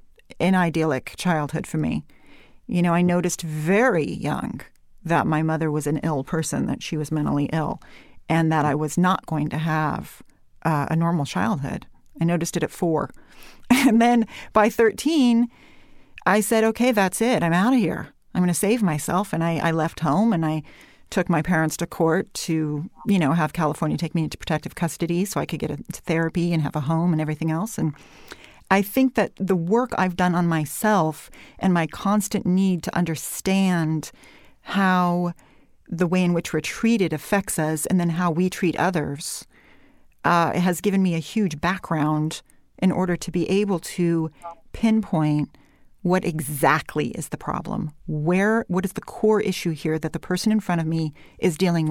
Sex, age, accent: female, 40-59, American